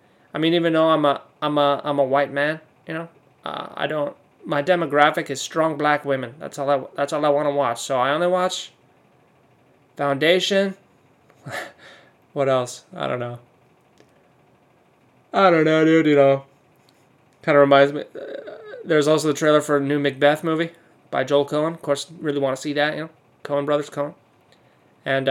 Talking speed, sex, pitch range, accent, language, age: 185 wpm, male, 135-165 Hz, American, English, 20-39